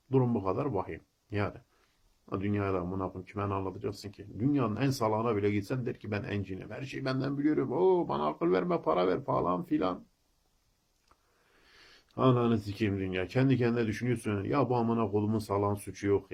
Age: 50-69